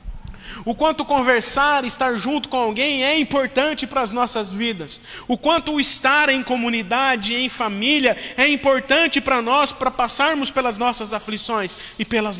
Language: Portuguese